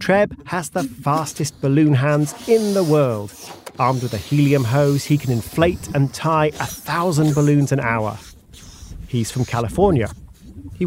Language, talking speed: English, 155 wpm